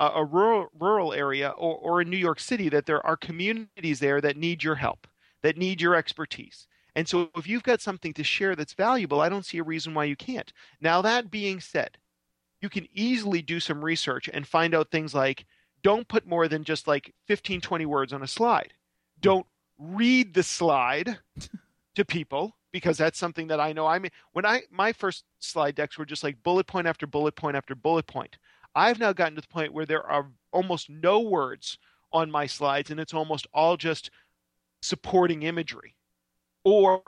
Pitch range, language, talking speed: 145-175 Hz, French, 195 wpm